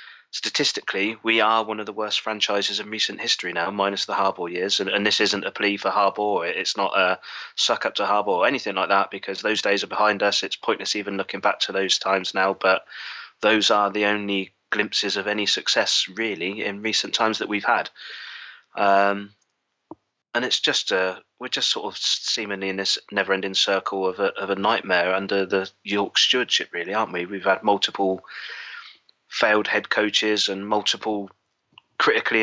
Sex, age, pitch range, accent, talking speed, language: male, 20-39, 95-105 Hz, British, 190 wpm, English